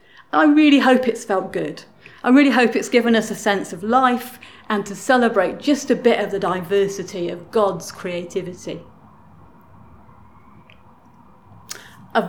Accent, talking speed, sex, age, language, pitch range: British, 140 wpm, female, 40-59, English, 175-235 Hz